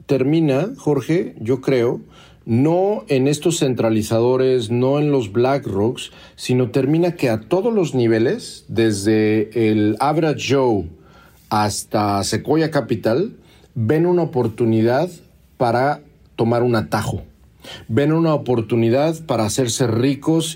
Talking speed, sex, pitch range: 115 wpm, male, 115-145 Hz